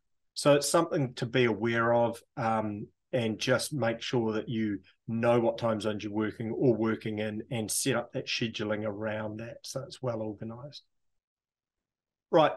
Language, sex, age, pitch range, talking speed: English, male, 30-49, 115-140 Hz, 165 wpm